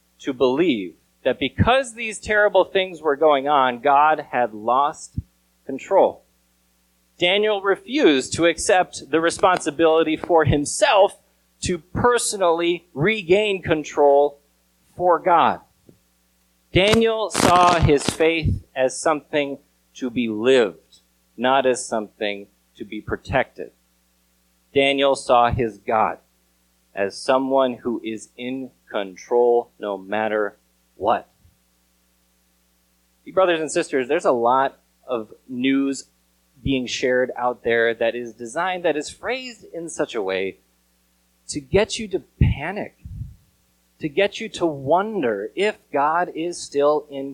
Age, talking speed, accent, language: 30-49, 120 wpm, American, English